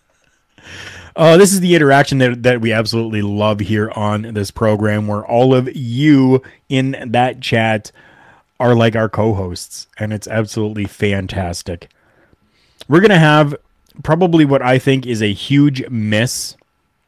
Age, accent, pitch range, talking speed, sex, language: 30-49, American, 100-125 Hz, 145 wpm, male, English